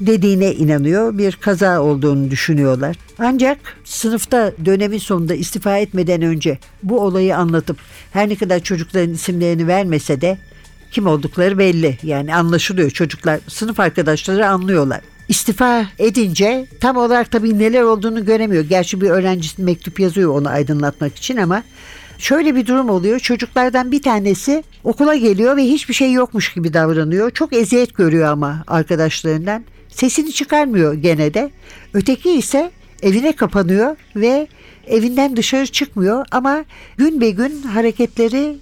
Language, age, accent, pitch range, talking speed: Turkish, 60-79, native, 170-235 Hz, 135 wpm